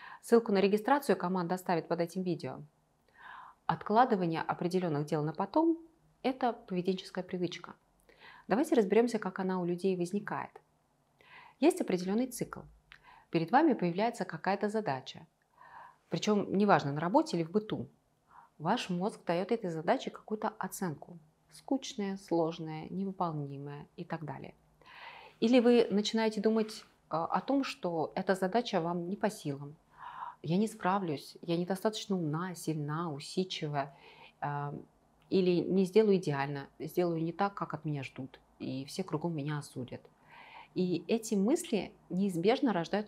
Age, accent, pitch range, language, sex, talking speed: 30-49, native, 170-225 Hz, Russian, female, 130 wpm